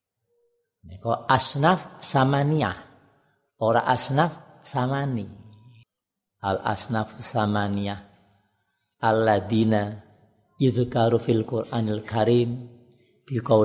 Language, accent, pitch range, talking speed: Indonesian, native, 105-135 Hz, 70 wpm